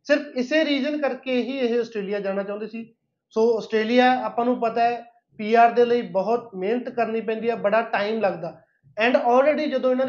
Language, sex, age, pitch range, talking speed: Punjabi, male, 30-49, 230-270 Hz, 185 wpm